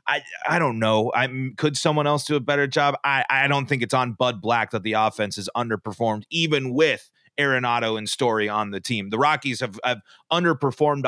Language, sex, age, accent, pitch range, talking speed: English, male, 30-49, American, 110-150 Hz, 205 wpm